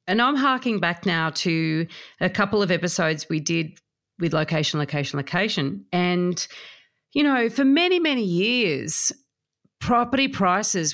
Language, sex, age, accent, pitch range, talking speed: English, female, 40-59, Australian, 160-215 Hz, 135 wpm